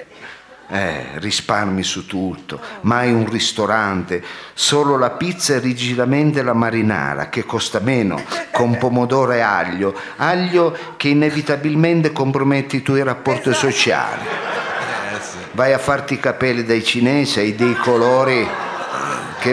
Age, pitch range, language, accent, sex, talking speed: 50-69, 120-155 Hz, Italian, native, male, 125 wpm